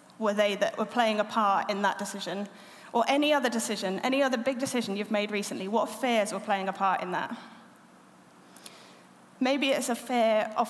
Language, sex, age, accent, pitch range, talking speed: English, female, 30-49, British, 215-245 Hz, 190 wpm